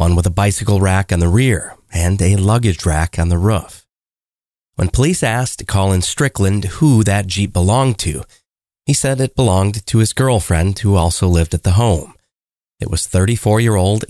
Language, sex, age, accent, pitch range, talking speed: English, male, 30-49, American, 95-115 Hz, 175 wpm